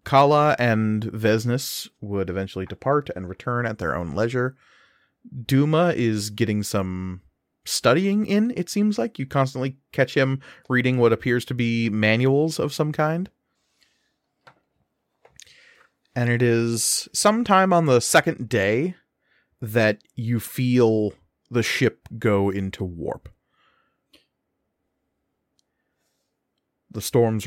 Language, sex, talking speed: English, male, 115 wpm